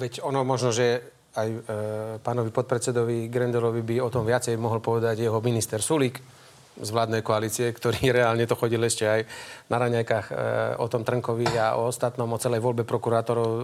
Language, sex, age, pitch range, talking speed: Slovak, male, 30-49, 110-125 Hz, 165 wpm